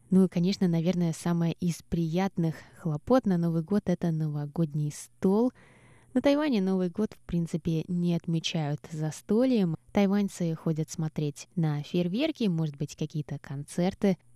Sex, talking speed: female, 140 wpm